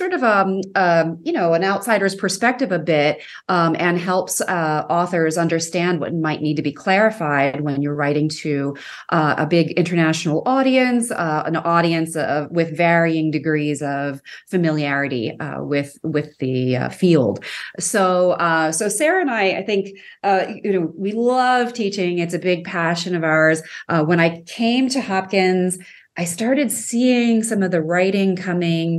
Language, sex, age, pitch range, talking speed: English, female, 30-49, 155-190 Hz, 165 wpm